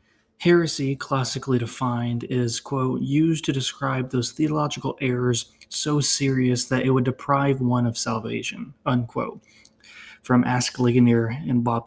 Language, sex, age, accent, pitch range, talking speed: English, male, 20-39, American, 120-140 Hz, 130 wpm